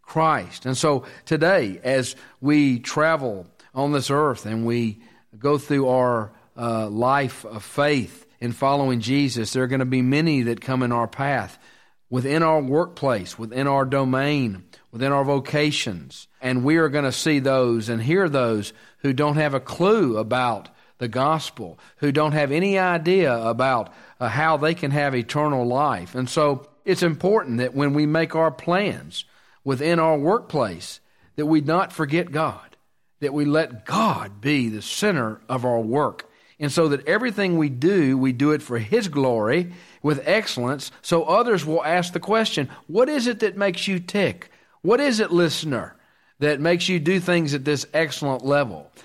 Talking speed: 170 wpm